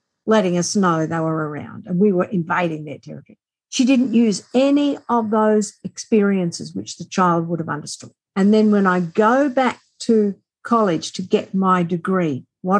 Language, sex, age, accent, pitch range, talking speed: English, female, 50-69, Australian, 170-220 Hz, 180 wpm